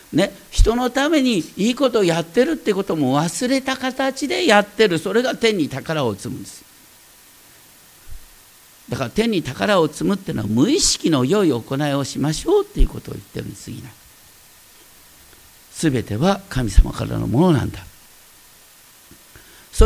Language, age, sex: Japanese, 50-69, male